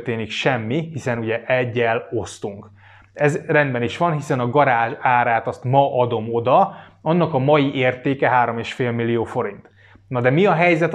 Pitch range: 120-165 Hz